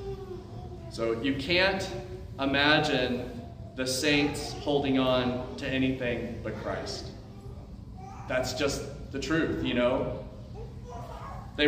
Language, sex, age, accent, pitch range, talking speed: English, male, 30-49, American, 130-165 Hz, 100 wpm